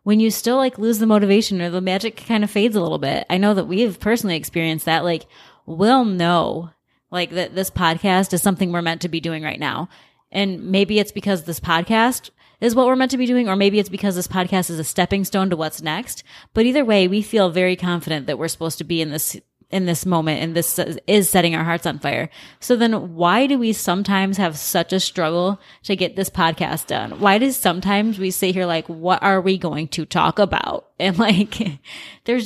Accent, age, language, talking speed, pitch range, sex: American, 20-39, English, 225 wpm, 170-215 Hz, female